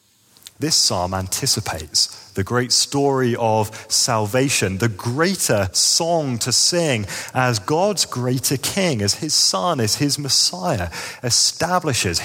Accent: British